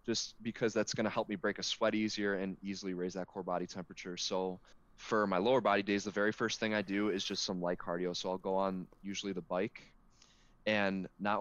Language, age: English, 20-39